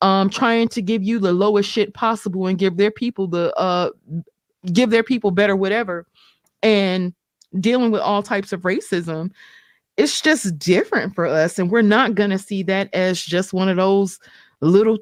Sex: female